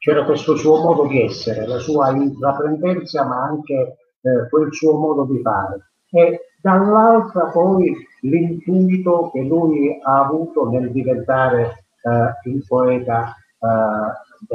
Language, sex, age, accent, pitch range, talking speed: Italian, male, 50-69, native, 125-180 Hz, 130 wpm